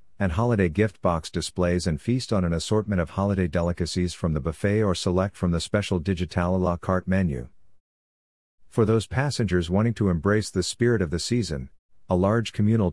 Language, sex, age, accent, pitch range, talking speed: English, male, 50-69, American, 85-105 Hz, 185 wpm